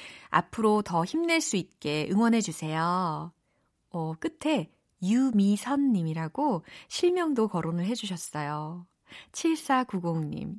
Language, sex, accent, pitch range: Korean, female, native, 165-250 Hz